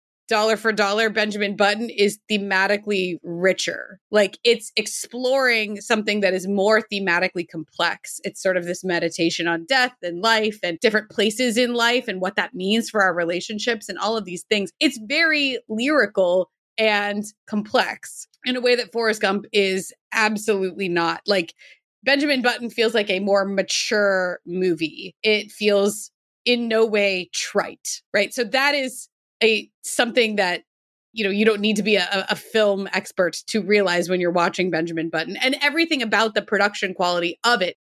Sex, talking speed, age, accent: female, 165 wpm, 20-39, American